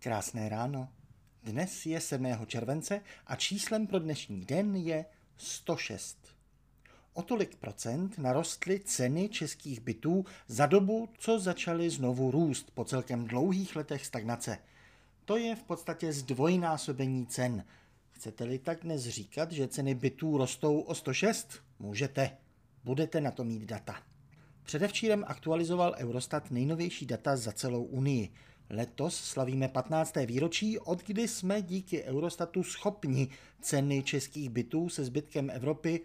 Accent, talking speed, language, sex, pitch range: native, 125 wpm, Czech, male, 125-170 Hz